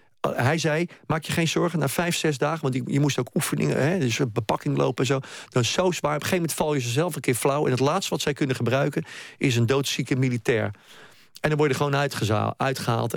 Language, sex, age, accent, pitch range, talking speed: Dutch, male, 40-59, Dutch, 125-160 Hz, 240 wpm